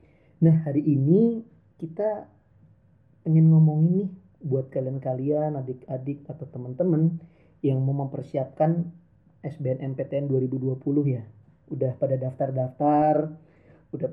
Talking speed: 100 wpm